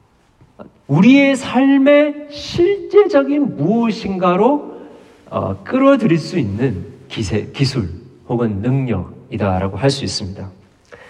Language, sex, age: Korean, male, 40-59